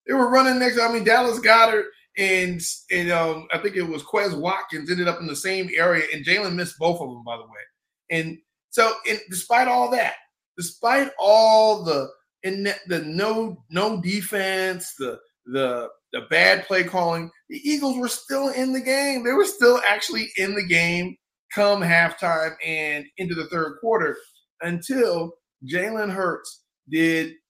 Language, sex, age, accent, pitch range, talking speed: English, male, 30-49, American, 165-235 Hz, 175 wpm